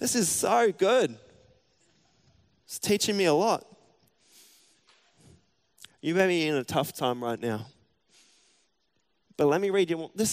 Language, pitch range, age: English, 125-155 Hz, 20-39